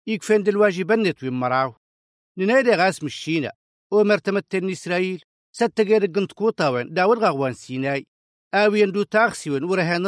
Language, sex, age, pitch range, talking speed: Arabic, male, 50-69, 145-215 Hz, 125 wpm